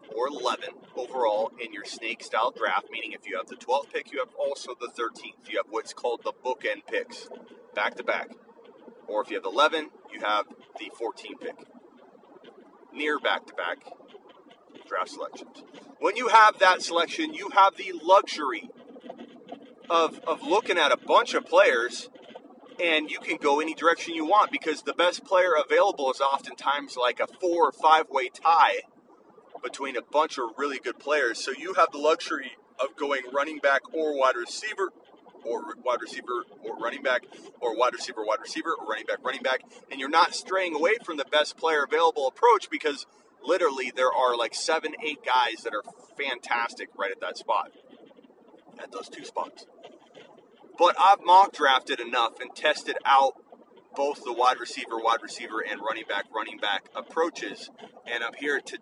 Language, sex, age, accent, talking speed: English, male, 30-49, American, 170 wpm